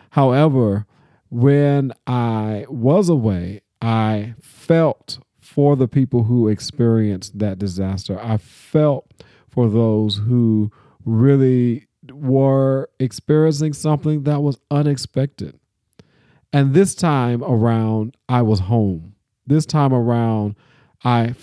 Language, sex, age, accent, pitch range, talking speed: English, male, 40-59, American, 105-135 Hz, 105 wpm